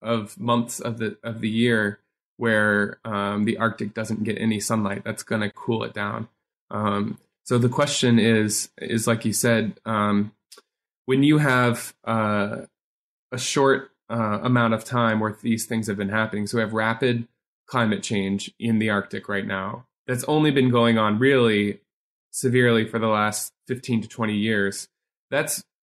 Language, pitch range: English, 105-125 Hz